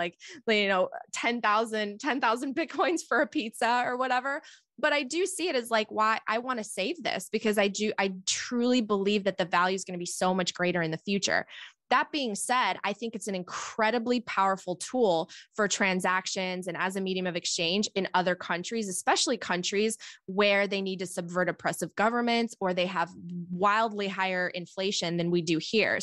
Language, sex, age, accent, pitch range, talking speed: English, female, 20-39, American, 185-220 Hz, 190 wpm